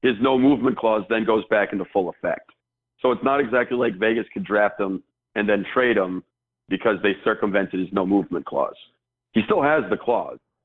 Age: 50-69